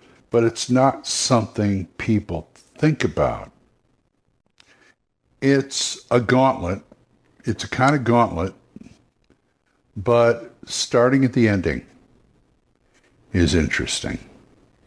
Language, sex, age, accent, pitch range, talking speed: English, male, 60-79, American, 100-125 Hz, 90 wpm